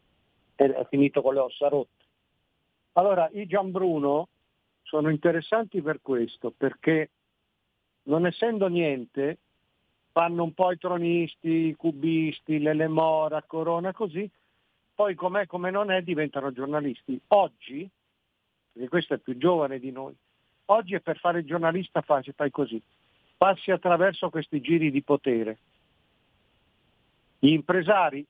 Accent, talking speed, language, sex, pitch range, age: native, 125 wpm, Italian, male, 130-170 Hz, 50-69